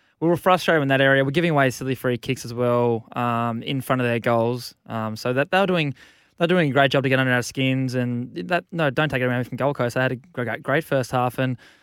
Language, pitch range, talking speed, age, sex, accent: English, 120-140 Hz, 265 wpm, 20-39, male, Australian